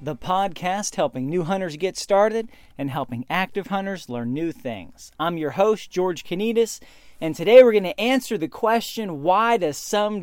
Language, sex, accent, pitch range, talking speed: English, male, American, 155-215 Hz, 175 wpm